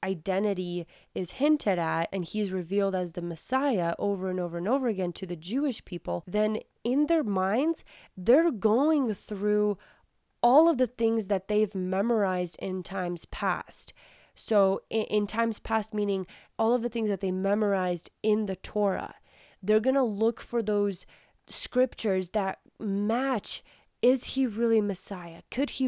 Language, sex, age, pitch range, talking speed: English, female, 20-39, 185-230 Hz, 160 wpm